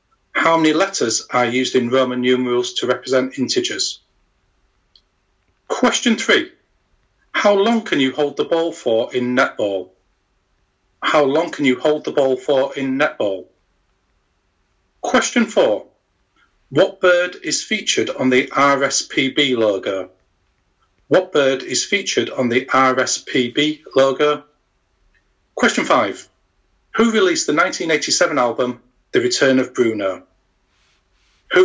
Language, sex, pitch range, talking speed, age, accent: English, male, 115-185 Hz, 120 wpm, 40-59, British